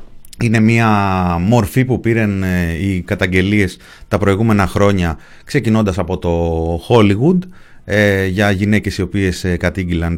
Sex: male